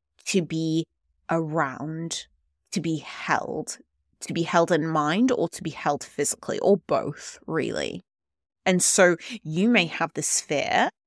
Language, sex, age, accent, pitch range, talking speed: English, female, 20-39, British, 150-185 Hz, 140 wpm